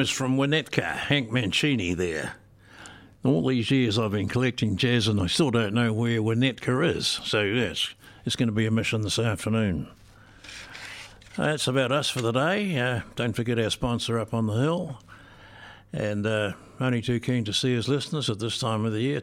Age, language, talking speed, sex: 60-79, English, 195 wpm, male